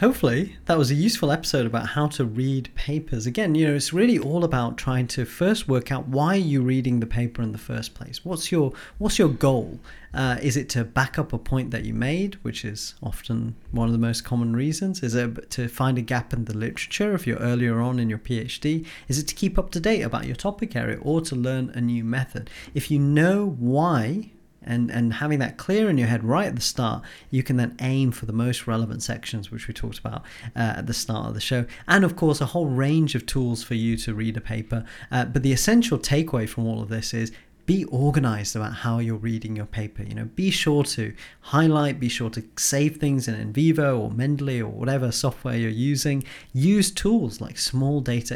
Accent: British